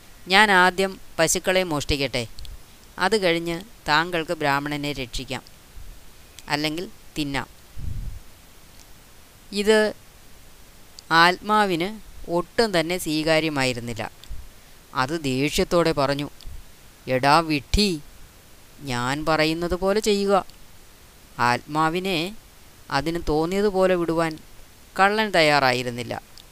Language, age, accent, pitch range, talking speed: Malayalam, 20-39, native, 120-175 Hz, 70 wpm